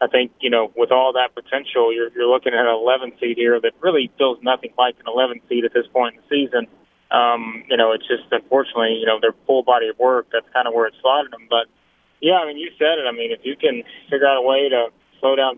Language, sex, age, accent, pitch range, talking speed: English, male, 30-49, American, 120-145 Hz, 265 wpm